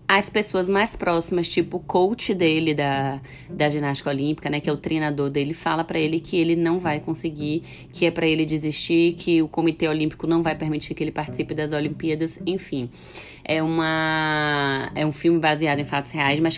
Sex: female